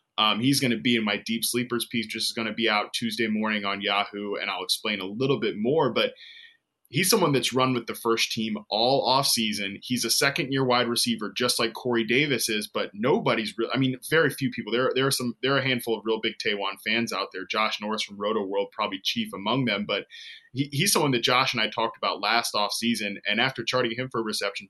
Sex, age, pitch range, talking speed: male, 20-39, 110-135 Hz, 245 wpm